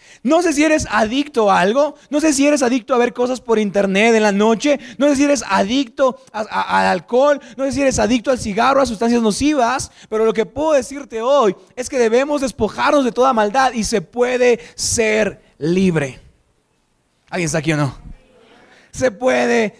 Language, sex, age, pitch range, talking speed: Spanish, male, 30-49, 200-270 Hz, 190 wpm